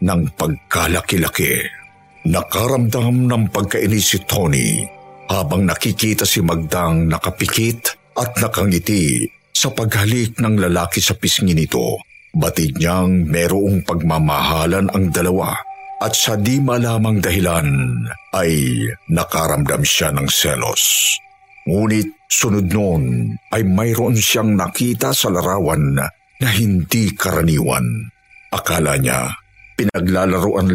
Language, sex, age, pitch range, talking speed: Filipino, male, 50-69, 85-110 Hz, 100 wpm